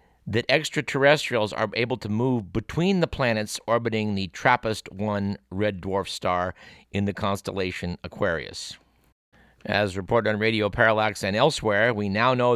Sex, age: male, 50-69